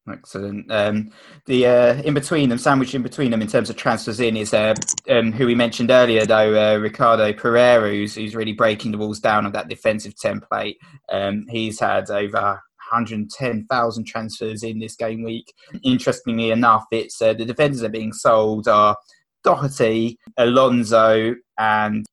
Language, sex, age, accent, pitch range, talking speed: English, male, 20-39, British, 110-120 Hz, 175 wpm